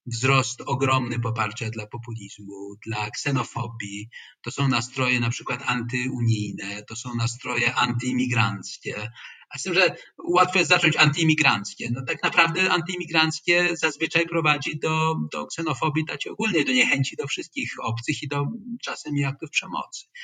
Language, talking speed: Polish, 135 wpm